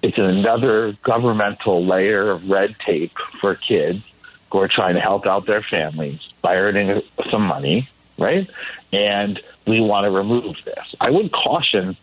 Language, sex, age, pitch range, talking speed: English, male, 50-69, 100-125 Hz, 155 wpm